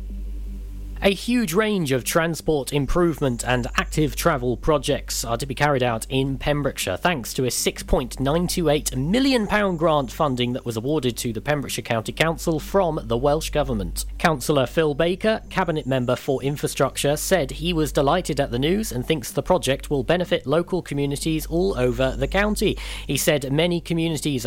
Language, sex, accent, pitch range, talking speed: English, male, British, 130-170 Hz, 160 wpm